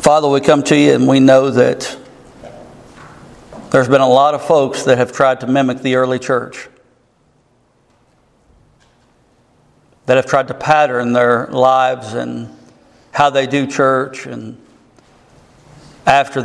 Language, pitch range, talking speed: English, 125-140 Hz, 135 wpm